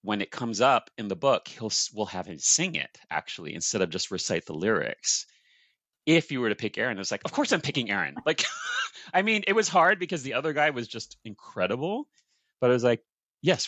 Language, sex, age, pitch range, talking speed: English, male, 30-49, 105-130 Hz, 230 wpm